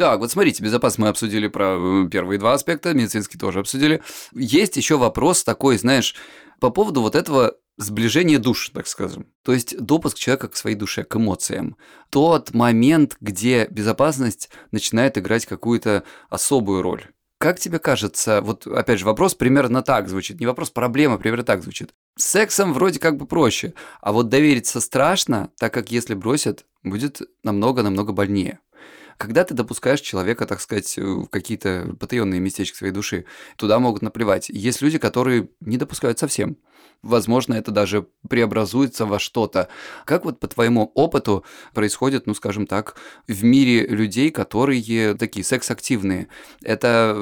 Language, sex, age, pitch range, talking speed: Russian, male, 20-39, 100-125 Hz, 150 wpm